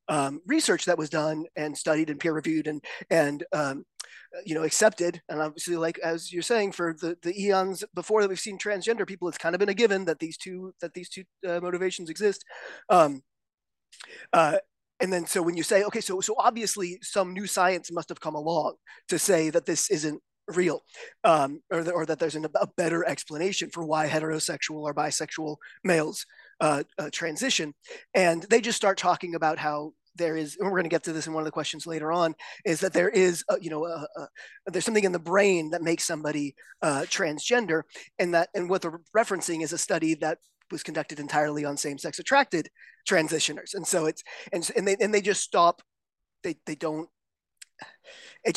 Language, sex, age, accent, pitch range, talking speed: English, male, 30-49, American, 155-190 Hz, 205 wpm